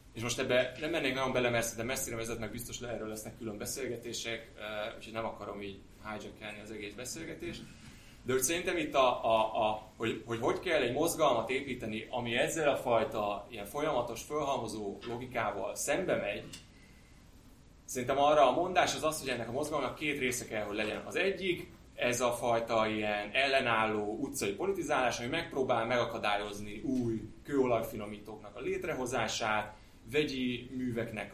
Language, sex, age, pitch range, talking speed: Hungarian, male, 30-49, 105-130 Hz, 155 wpm